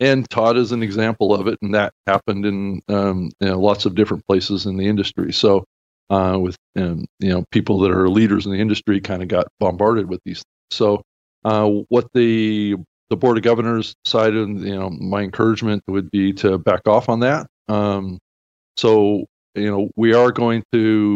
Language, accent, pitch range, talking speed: English, American, 95-110 Hz, 195 wpm